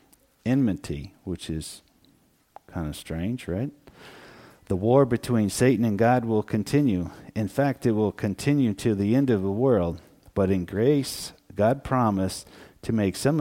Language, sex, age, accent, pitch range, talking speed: English, male, 50-69, American, 90-120 Hz, 150 wpm